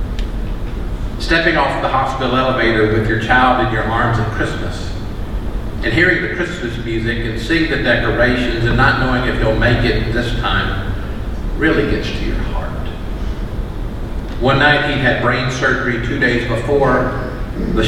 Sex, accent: male, American